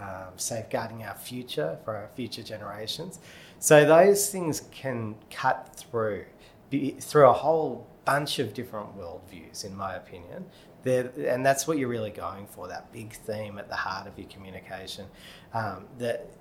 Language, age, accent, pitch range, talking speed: English, 30-49, Australian, 100-135 Hz, 160 wpm